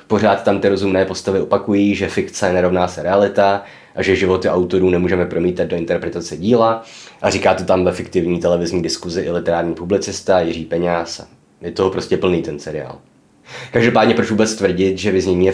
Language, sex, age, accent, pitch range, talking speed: Czech, male, 20-39, native, 90-100 Hz, 180 wpm